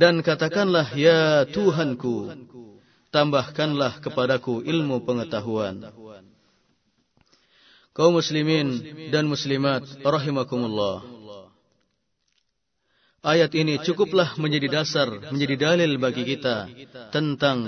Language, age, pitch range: Indonesian, 30-49, 120-155 Hz